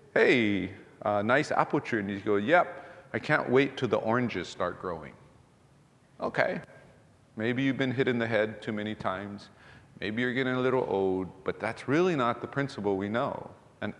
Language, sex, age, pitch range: English, male, 40-59, 110-140 Hz